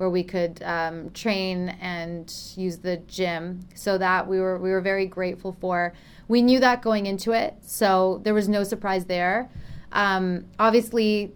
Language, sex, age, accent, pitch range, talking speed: English, female, 30-49, American, 175-195 Hz, 170 wpm